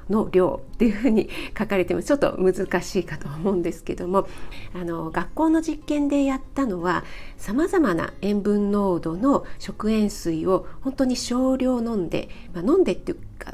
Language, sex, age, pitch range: Japanese, female, 40-59, 175-255 Hz